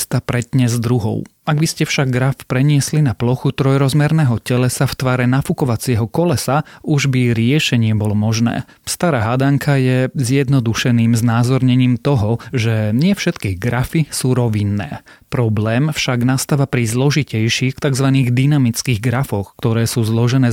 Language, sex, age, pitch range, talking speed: Slovak, male, 30-49, 115-135 Hz, 135 wpm